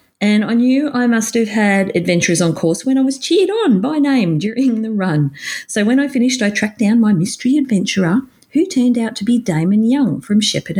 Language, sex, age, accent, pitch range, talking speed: English, female, 40-59, Australian, 175-240 Hz, 215 wpm